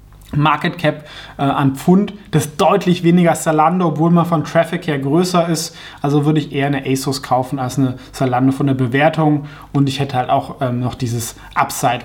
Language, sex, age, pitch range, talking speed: German, male, 20-39, 130-165 Hz, 190 wpm